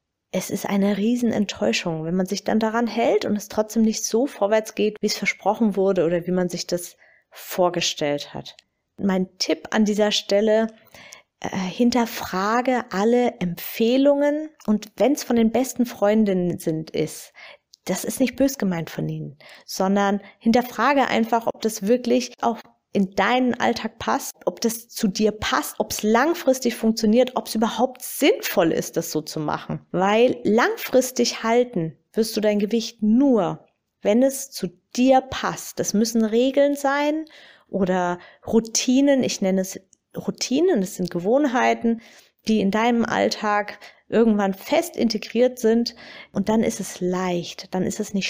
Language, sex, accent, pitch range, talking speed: German, female, German, 195-245 Hz, 155 wpm